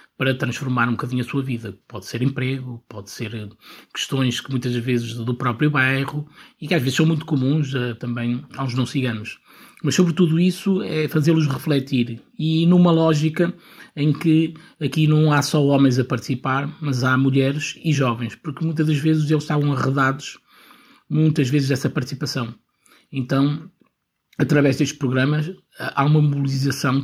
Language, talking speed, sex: Portuguese, 155 wpm, male